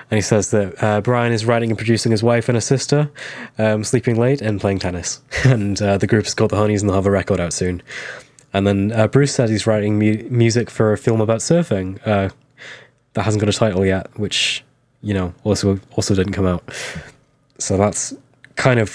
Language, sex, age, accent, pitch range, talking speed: English, male, 10-29, British, 100-125 Hz, 215 wpm